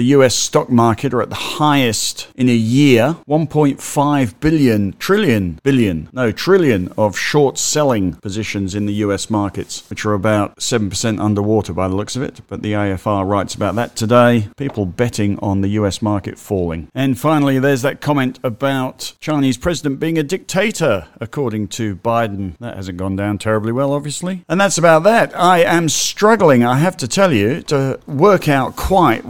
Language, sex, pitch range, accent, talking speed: English, male, 105-130 Hz, British, 175 wpm